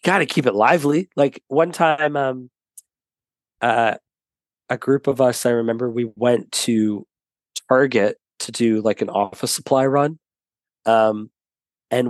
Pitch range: 115-145 Hz